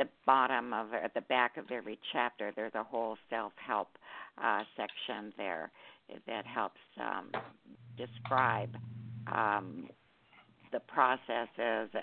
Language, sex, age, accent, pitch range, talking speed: English, female, 60-79, American, 110-145 Hz, 115 wpm